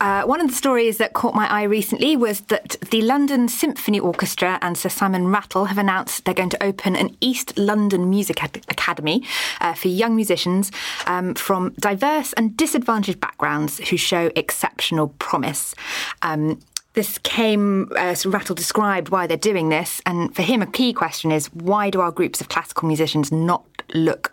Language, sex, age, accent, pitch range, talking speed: English, female, 20-39, British, 160-210 Hz, 180 wpm